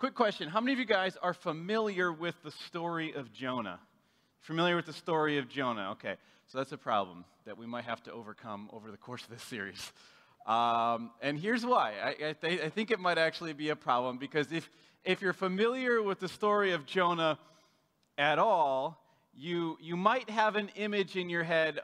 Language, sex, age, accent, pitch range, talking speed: English, male, 30-49, American, 125-180 Hz, 200 wpm